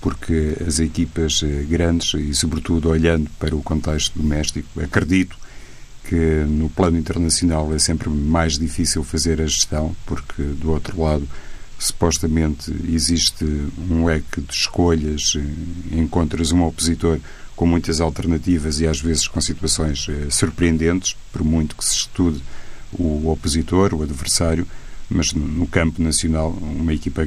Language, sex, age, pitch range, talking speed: Portuguese, male, 50-69, 75-85 Hz, 130 wpm